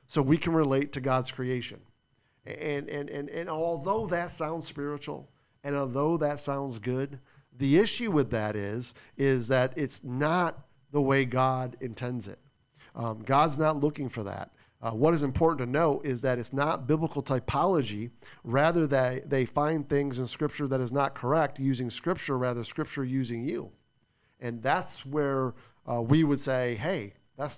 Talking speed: 170 wpm